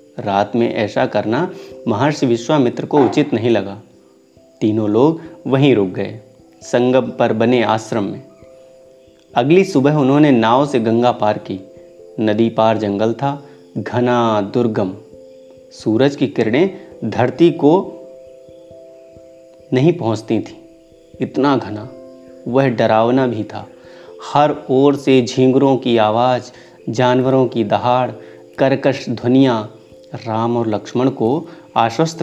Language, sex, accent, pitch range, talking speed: Hindi, male, native, 110-140 Hz, 120 wpm